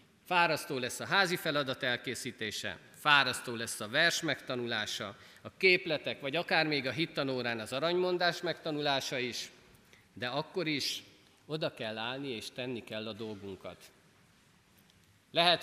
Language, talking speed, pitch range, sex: Hungarian, 130 wpm, 125-165 Hz, male